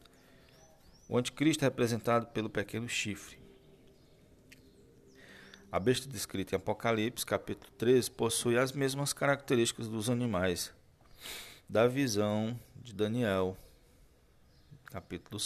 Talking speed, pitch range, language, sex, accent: 95 wpm, 95-125 Hz, Portuguese, male, Brazilian